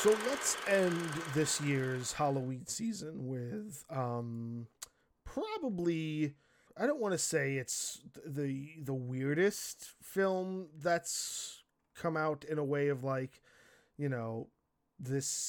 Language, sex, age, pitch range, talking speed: English, male, 20-39, 130-155 Hz, 120 wpm